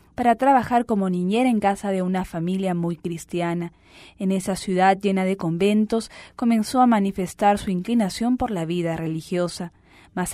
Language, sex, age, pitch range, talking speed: English, female, 20-39, 185-230 Hz, 155 wpm